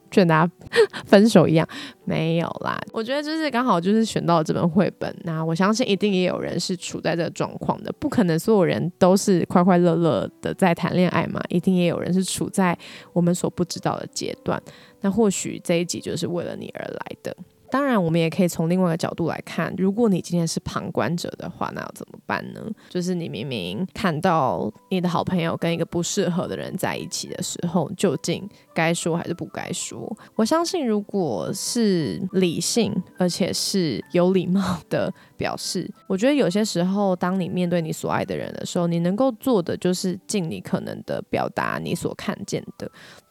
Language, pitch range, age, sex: Chinese, 175-210 Hz, 20-39, female